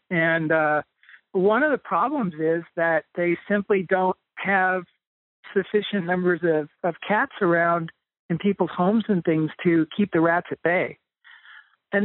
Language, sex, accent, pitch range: English, male, American, 160-200 Hz